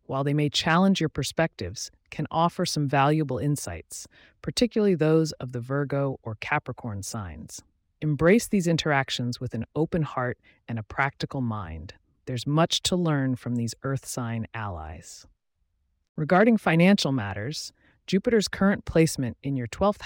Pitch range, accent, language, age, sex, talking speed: 115-165 Hz, American, English, 30-49, female, 145 wpm